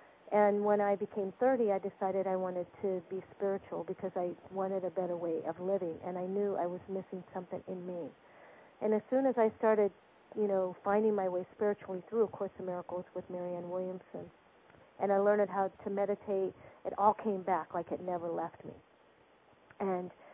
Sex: female